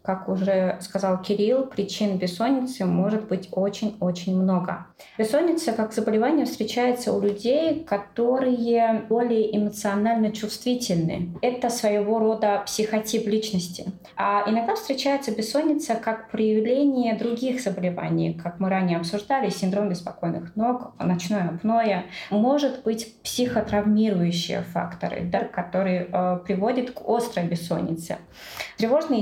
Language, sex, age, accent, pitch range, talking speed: Russian, female, 20-39, native, 190-235 Hz, 110 wpm